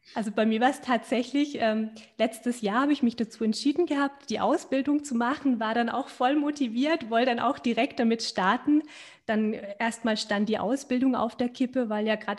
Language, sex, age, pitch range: German, female, 20-39, 220-265 Hz